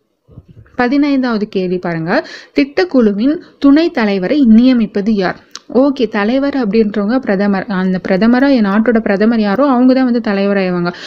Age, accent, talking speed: 20-39, native, 120 wpm